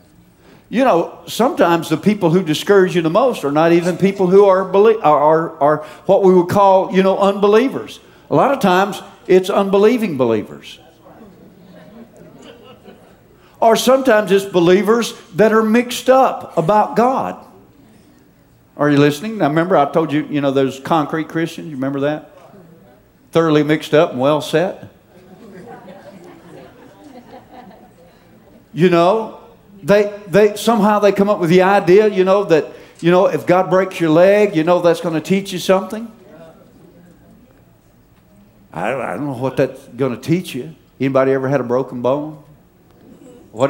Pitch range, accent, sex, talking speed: 150-200 Hz, American, male, 150 wpm